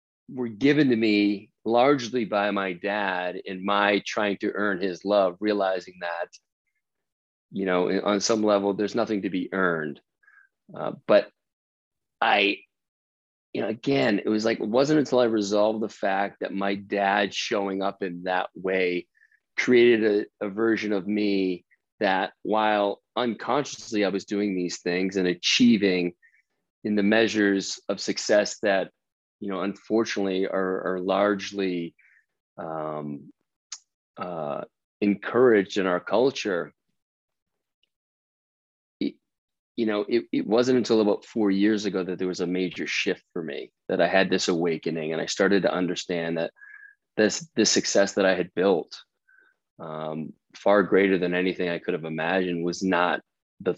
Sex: male